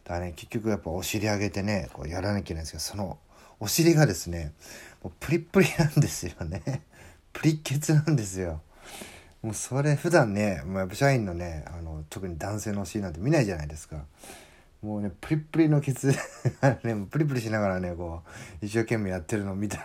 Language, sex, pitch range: Japanese, male, 85-115 Hz